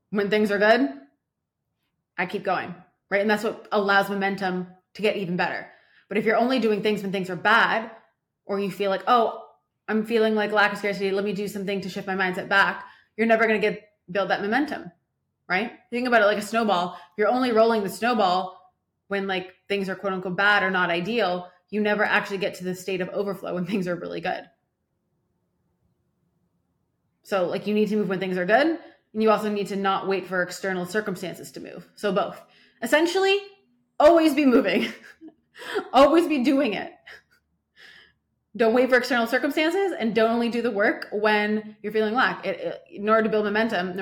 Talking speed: 195 wpm